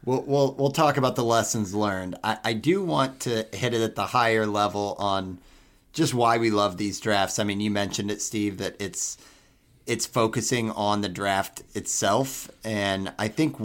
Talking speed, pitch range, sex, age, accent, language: 190 wpm, 100-125 Hz, male, 30-49, American, English